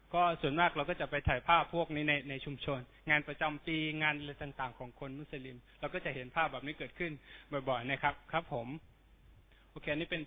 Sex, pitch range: male, 145-180 Hz